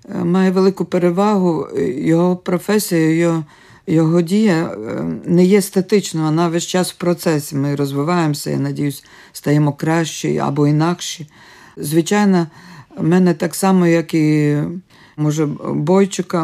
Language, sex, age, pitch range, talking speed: Ukrainian, female, 50-69, 140-175 Hz, 120 wpm